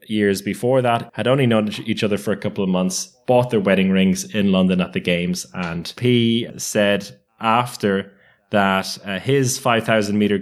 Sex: male